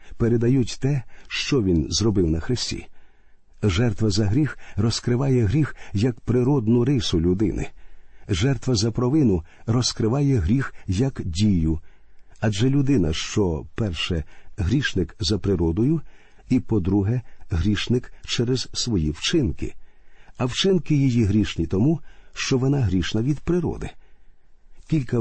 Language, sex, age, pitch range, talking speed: Ukrainian, male, 50-69, 95-125 Hz, 110 wpm